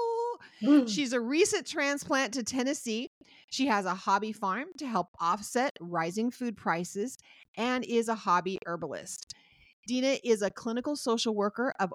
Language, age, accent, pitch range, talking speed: English, 40-59, American, 195-250 Hz, 145 wpm